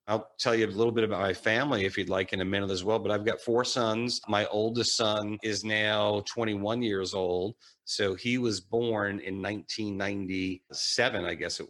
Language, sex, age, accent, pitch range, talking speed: English, male, 40-59, American, 105-125 Hz, 200 wpm